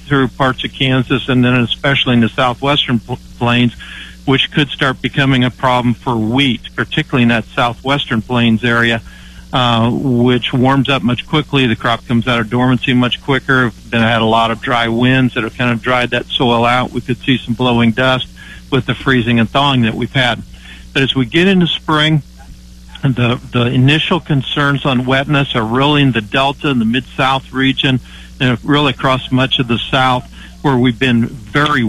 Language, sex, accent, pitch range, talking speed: English, male, American, 115-140 Hz, 190 wpm